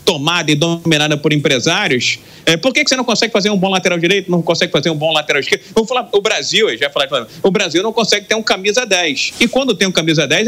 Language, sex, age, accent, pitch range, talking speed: Portuguese, male, 40-59, Brazilian, 165-220 Hz, 260 wpm